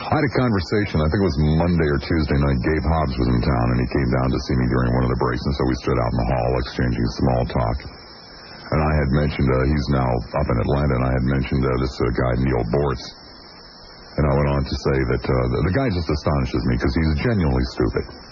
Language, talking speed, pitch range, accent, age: English, 255 wpm, 65-90 Hz, American, 50-69